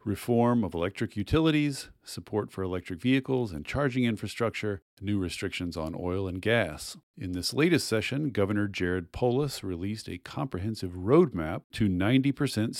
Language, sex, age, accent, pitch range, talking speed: English, male, 40-59, American, 90-125 Hz, 140 wpm